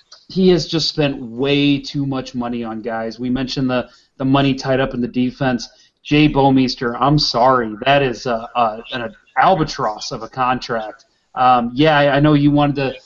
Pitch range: 140-190 Hz